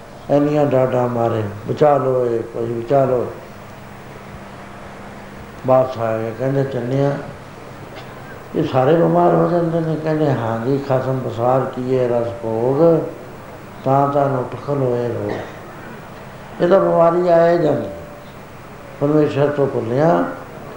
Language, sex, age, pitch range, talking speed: Punjabi, male, 60-79, 125-150 Hz, 100 wpm